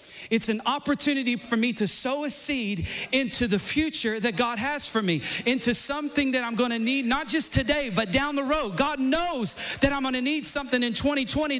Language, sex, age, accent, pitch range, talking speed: English, male, 40-59, American, 170-270 Hz, 210 wpm